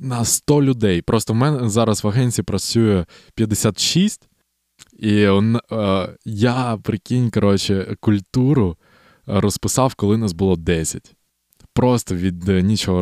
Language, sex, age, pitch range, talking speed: Ukrainian, male, 20-39, 90-125 Hz, 125 wpm